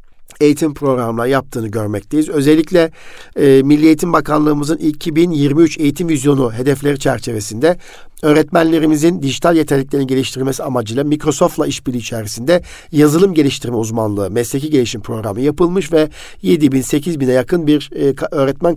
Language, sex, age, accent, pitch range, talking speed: Turkish, male, 50-69, native, 130-165 Hz, 120 wpm